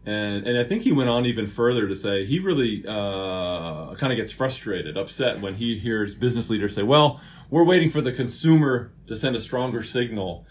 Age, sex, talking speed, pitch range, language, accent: 30-49, male, 205 wpm, 100-125 Hz, English, American